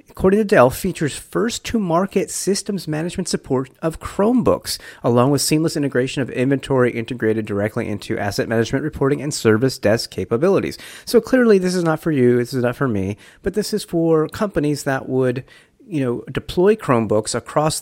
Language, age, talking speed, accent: English, 30-49, 170 wpm, American